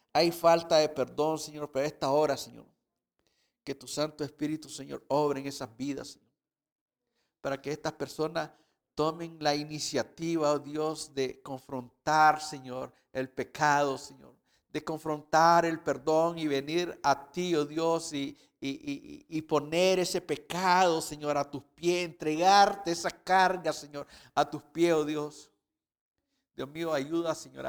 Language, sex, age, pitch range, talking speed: English, male, 50-69, 135-160 Hz, 145 wpm